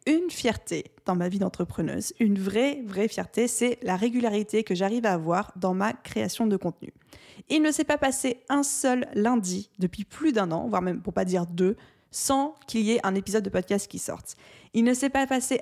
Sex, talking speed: female, 215 wpm